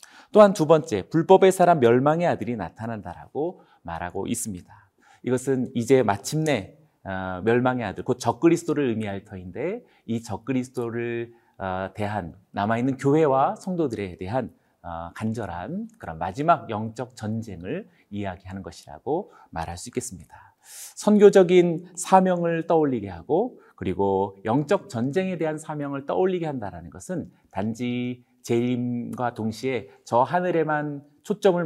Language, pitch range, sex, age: Korean, 100-165 Hz, male, 40-59